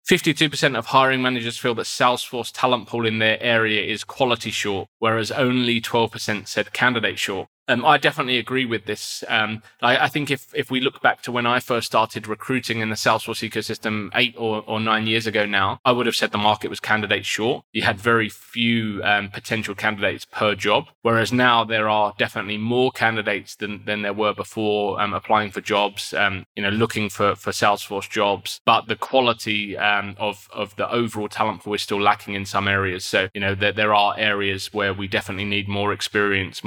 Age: 20-39